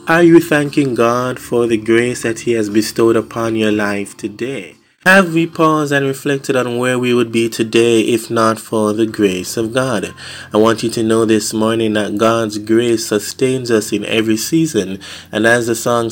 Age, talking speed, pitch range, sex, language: 20-39, 195 wpm, 110-125 Hz, male, English